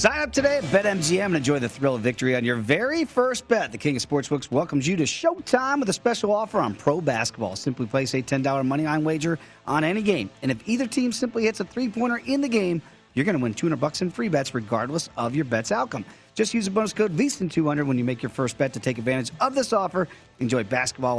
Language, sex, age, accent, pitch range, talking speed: English, male, 40-59, American, 125-185 Hz, 240 wpm